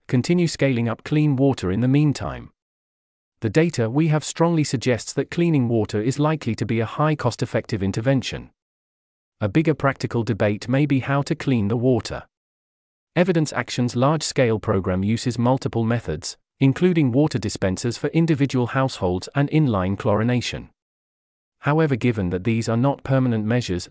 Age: 40-59